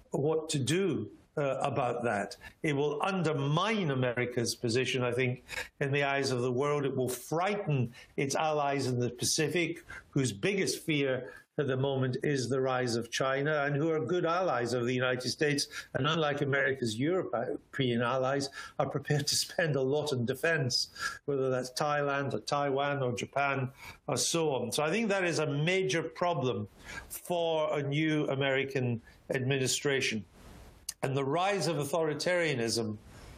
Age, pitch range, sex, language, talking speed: 50-69, 125-160 Hz, male, English, 160 wpm